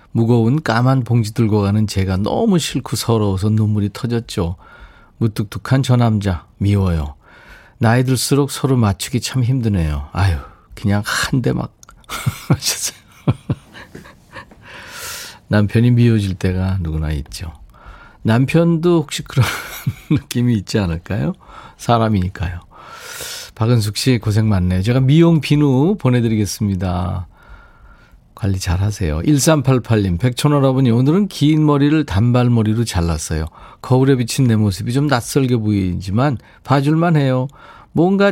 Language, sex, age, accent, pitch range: Korean, male, 40-59, native, 95-135 Hz